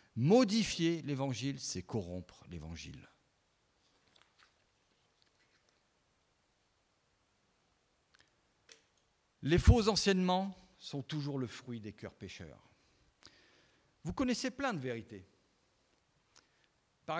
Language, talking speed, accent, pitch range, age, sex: French, 75 wpm, French, 100-160 Hz, 50-69, male